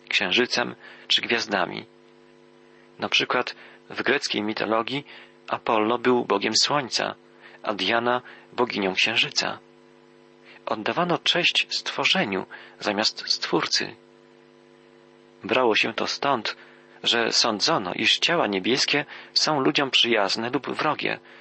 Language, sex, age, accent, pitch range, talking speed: Polish, male, 40-59, native, 90-125 Hz, 100 wpm